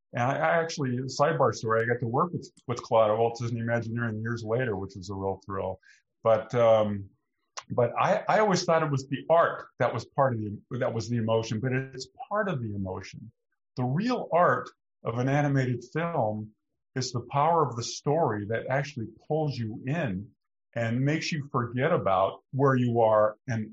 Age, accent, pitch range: 50-69, American, 110-140 Hz